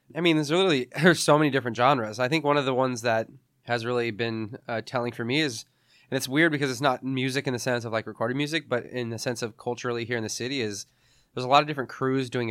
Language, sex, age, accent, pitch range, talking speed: English, male, 20-39, American, 110-130 Hz, 270 wpm